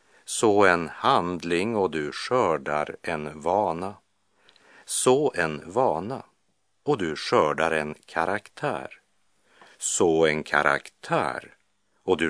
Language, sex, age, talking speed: Czech, male, 50-69, 100 wpm